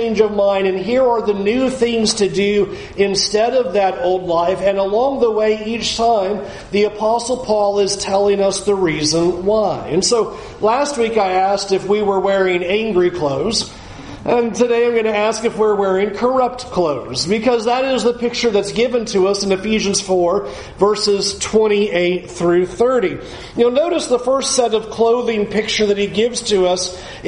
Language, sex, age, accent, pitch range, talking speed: English, male, 40-59, American, 190-230 Hz, 180 wpm